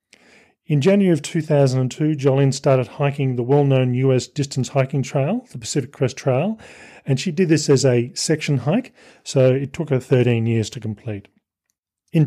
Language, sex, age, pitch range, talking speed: English, male, 40-59, 125-150 Hz, 165 wpm